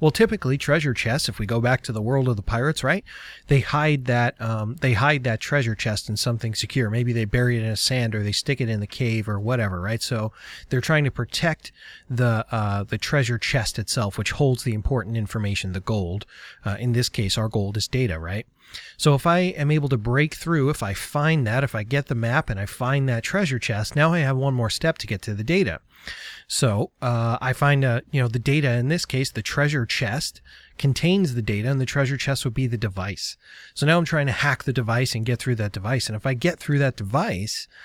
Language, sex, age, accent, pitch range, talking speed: English, male, 30-49, American, 115-145 Hz, 240 wpm